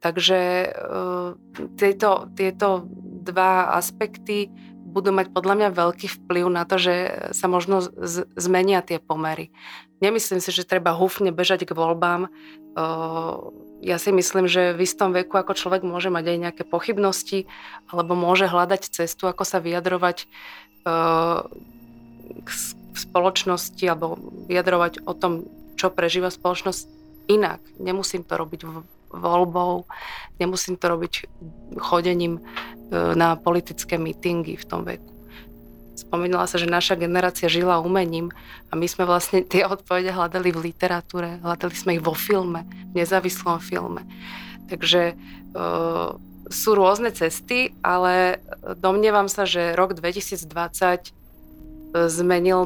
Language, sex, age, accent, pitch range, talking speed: Czech, female, 30-49, native, 170-190 Hz, 130 wpm